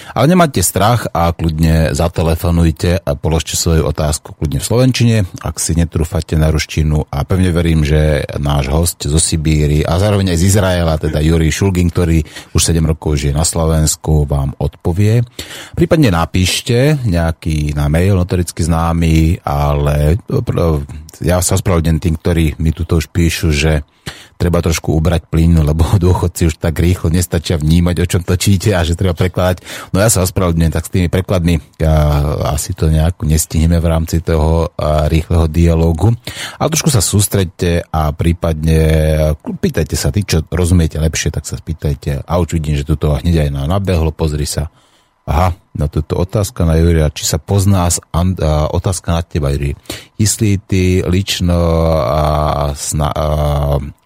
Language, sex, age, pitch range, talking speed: Slovak, male, 30-49, 80-90 Hz, 160 wpm